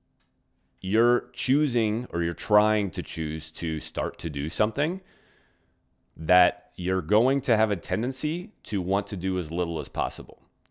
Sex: male